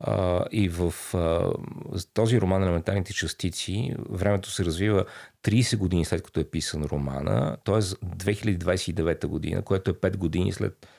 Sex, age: male, 40-59